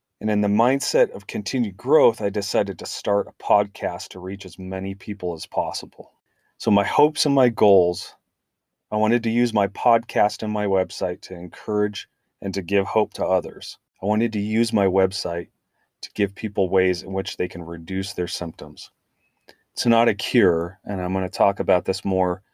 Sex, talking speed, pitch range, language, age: male, 190 wpm, 95-115 Hz, English, 30-49